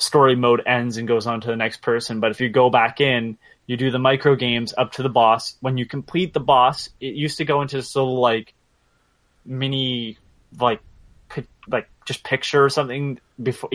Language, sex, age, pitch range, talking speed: English, male, 20-39, 115-140 Hz, 205 wpm